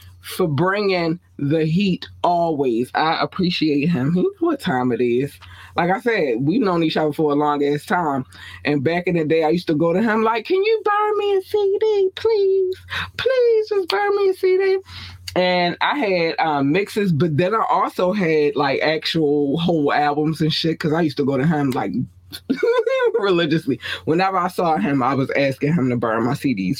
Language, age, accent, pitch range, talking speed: English, 20-39, American, 135-190 Hz, 195 wpm